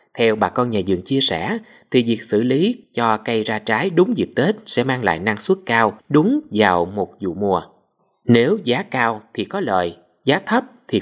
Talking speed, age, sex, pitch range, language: 205 wpm, 20-39, male, 110-185 Hz, Vietnamese